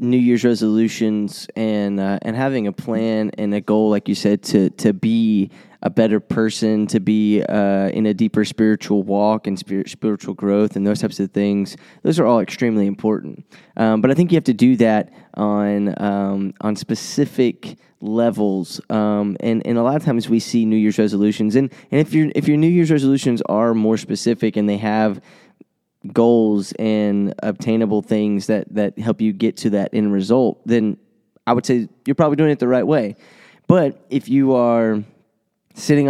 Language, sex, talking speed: English, male, 190 wpm